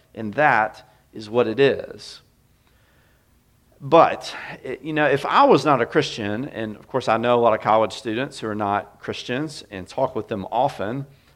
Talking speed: 180 wpm